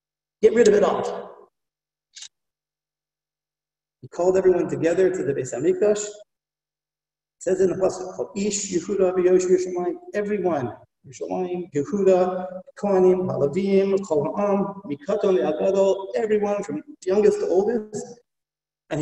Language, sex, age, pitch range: English, male, 50-69, 155-210 Hz